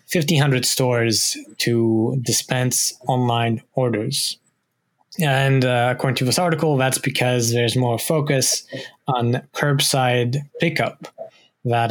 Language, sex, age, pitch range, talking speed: English, male, 20-39, 120-135 Hz, 105 wpm